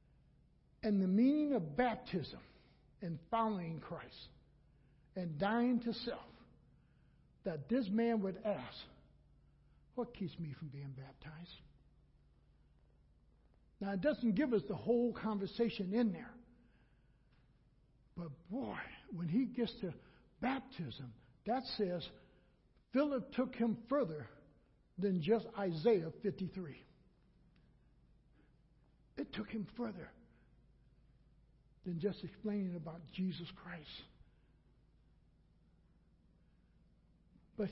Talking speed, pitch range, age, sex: 95 wpm, 145-220 Hz, 60-79, male